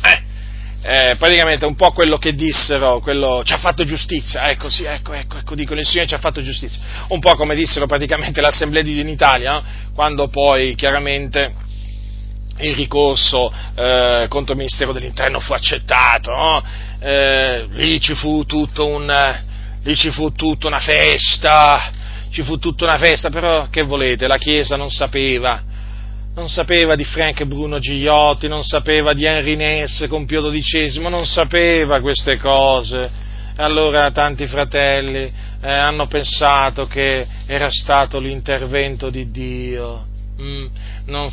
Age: 40-59